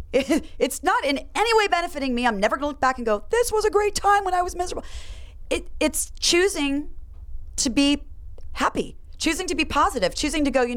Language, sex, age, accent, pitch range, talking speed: English, female, 30-49, American, 225-295 Hz, 205 wpm